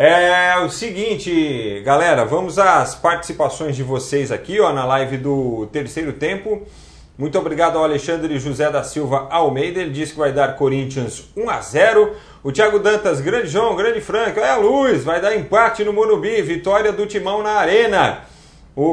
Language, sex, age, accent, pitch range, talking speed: Portuguese, male, 40-59, Brazilian, 145-215 Hz, 165 wpm